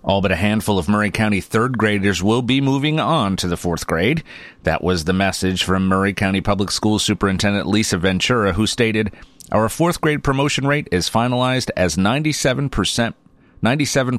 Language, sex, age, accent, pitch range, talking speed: English, male, 30-49, American, 95-115 Hz, 170 wpm